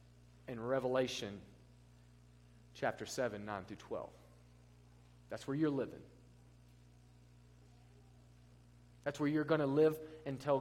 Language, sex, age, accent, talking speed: English, male, 30-49, American, 100 wpm